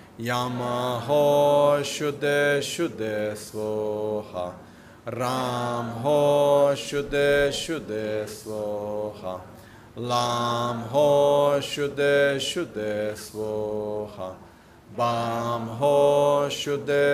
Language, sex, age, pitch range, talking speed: Italian, male, 30-49, 105-140 Hz, 60 wpm